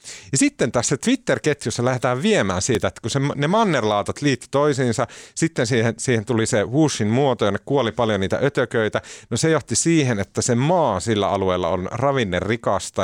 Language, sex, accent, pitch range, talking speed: Finnish, male, native, 100-125 Hz, 170 wpm